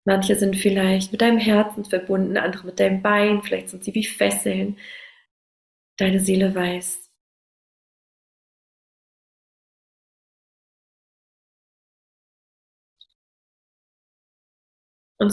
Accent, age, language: German, 30-49, German